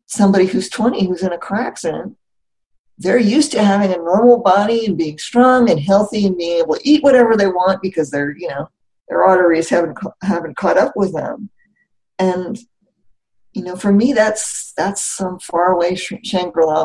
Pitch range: 140-210 Hz